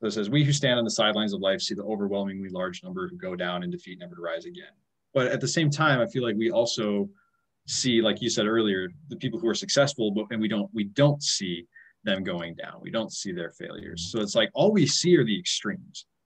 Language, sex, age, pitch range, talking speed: English, male, 20-39, 105-160 Hz, 255 wpm